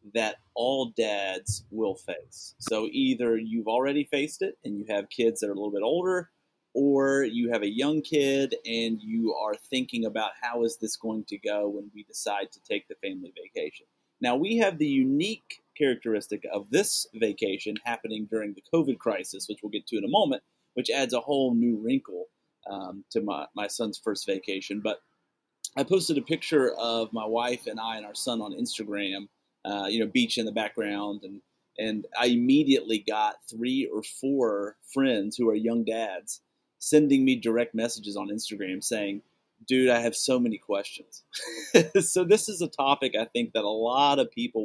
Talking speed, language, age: 190 wpm, English, 30-49